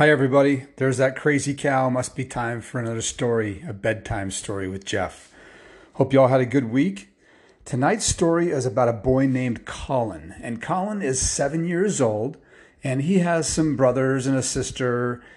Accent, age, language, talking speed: American, 40-59, English, 180 wpm